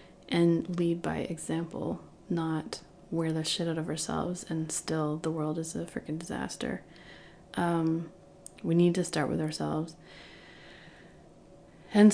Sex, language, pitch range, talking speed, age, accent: female, English, 160-185 Hz, 135 wpm, 30-49, American